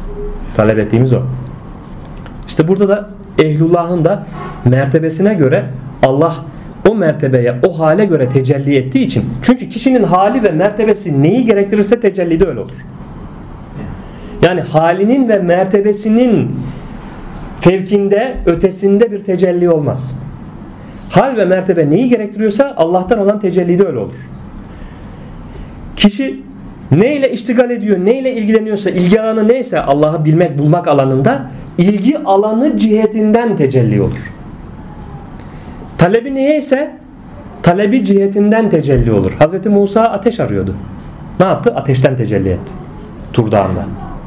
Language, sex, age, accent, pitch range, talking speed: Turkish, male, 40-59, native, 145-215 Hz, 115 wpm